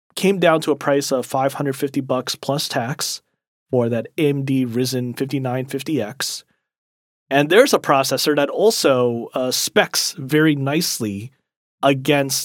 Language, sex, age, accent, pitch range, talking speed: English, male, 30-49, American, 125-150 Hz, 125 wpm